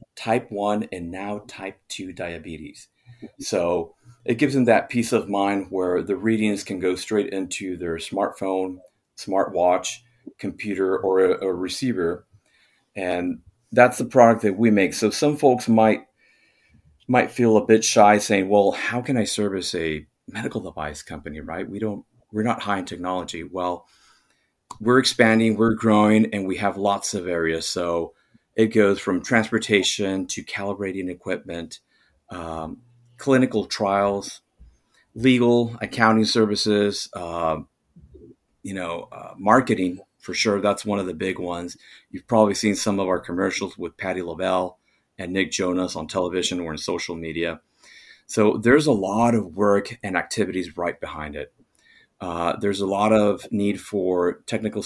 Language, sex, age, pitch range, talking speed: English, male, 40-59, 90-110 Hz, 155 wpm